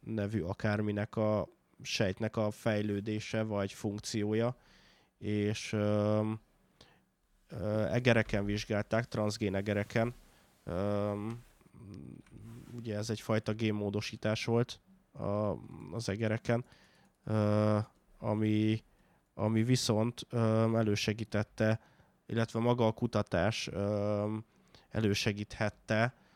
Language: Hungarian